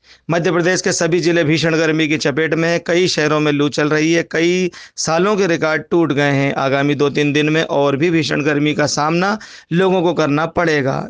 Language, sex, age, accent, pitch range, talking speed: Hindi, male, 50-69, native, 150-170 Hz, 210 wpm